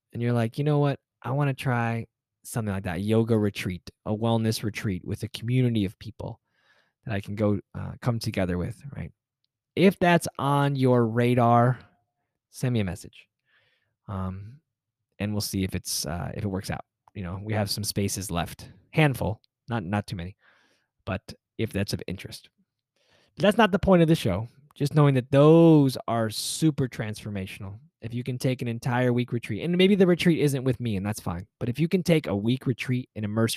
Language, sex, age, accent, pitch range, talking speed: English, male, 20-39, American, 105-130 Hz, 195 wpm